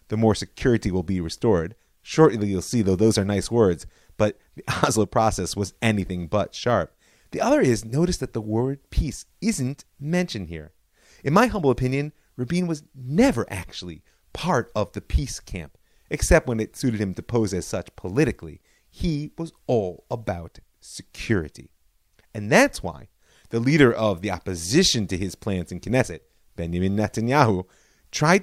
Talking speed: 165 wpm